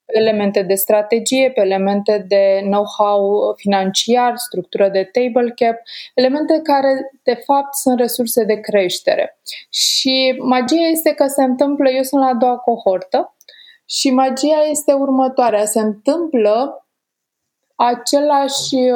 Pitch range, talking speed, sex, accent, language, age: 210-265 Hz, 125 wpm, female, native, Romanian, 20-39